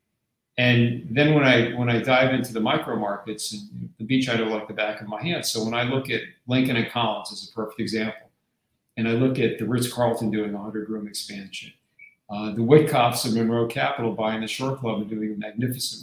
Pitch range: 110-125 Hz